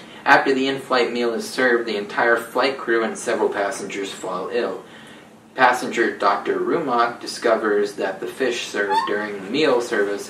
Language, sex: English, male